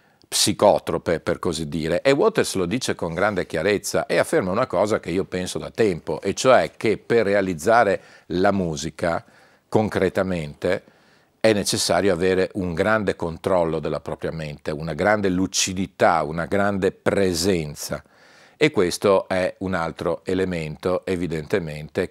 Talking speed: 135 wpm